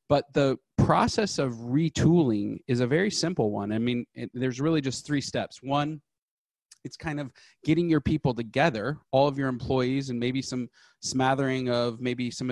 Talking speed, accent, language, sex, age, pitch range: 175 wpm, American, English, male, 30-49, 125-150 Hz